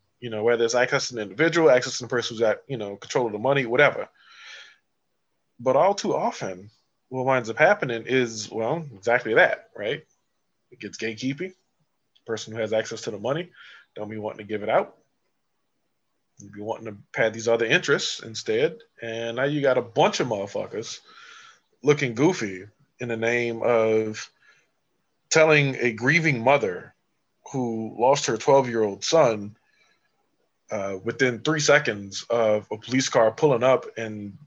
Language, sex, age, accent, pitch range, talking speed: English, male, 20-39, American, 110-145 Hz, 165 wpm